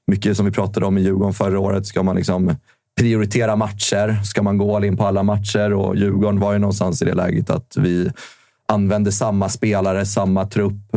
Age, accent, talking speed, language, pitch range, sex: 30-49, native, 200 wpm, Swedish, 95-115 Hz, male